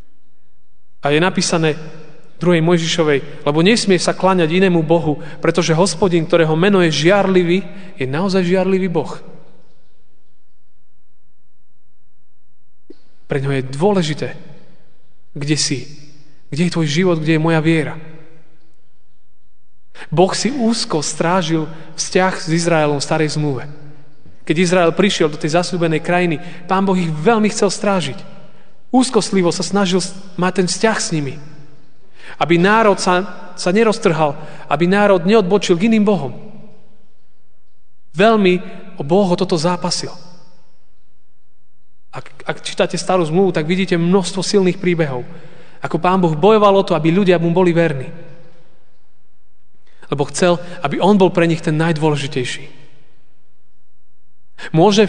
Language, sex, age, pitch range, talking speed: Slovak, male, 30-49, 160-190 Hz, 125 wpm